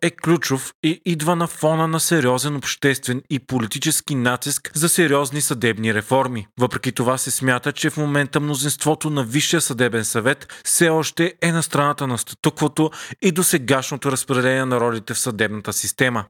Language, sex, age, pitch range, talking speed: Bulgarian, male, 30-49, 125-155 Hz, 160 wpm